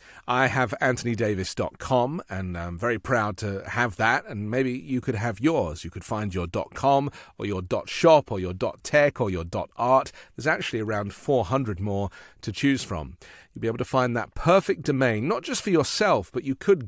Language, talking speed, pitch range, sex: English, 190 wpm, 105-140 Hz, male